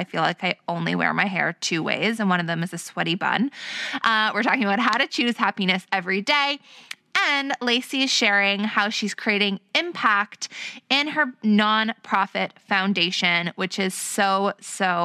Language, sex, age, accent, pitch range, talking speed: English, female, 20-39, American, 200-245 Hz, 175 wpm